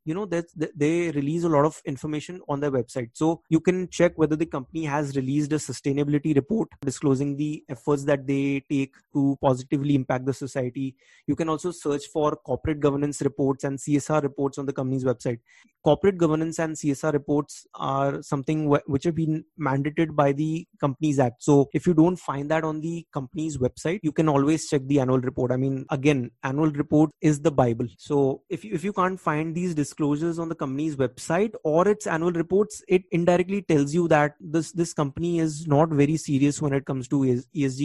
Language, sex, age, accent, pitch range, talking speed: English, male, 20-39, Indian, 140-165 Hz, 195 wpm